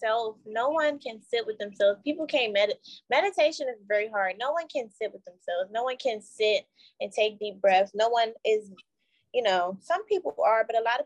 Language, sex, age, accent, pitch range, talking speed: English, female, 20-39, American, 210-250 Hz, 210 wpm